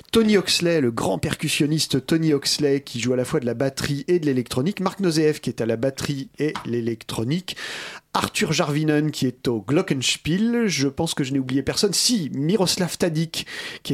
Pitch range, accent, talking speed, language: 130-170 Hz, French, 190 wpm, French